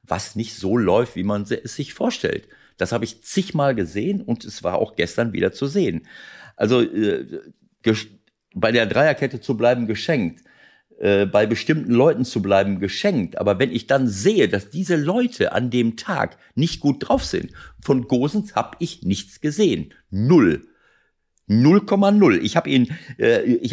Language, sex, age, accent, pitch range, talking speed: German, male, 50-69, German, 105-155 Hz, 165 wpm